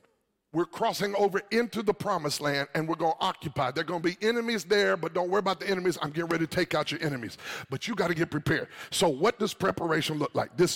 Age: 50-69